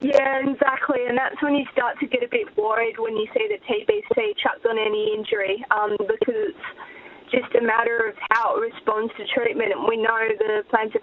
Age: 20-39